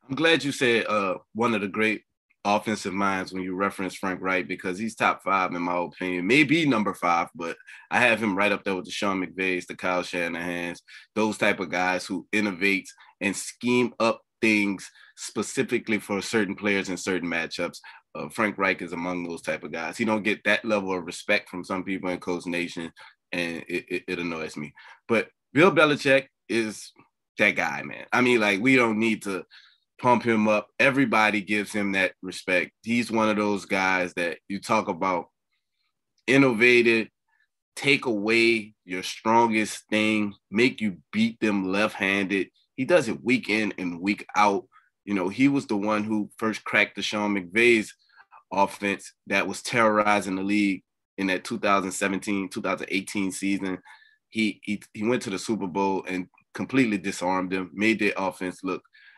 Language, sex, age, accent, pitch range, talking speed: English, male, 20-39, American, 95-110 Hz, 175 wpm